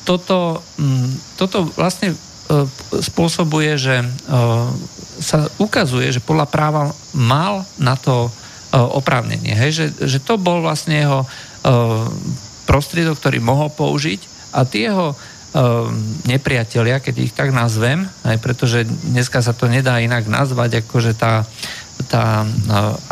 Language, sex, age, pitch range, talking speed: Slovak, male, 50-69, 115-150 Hz, 125 wpm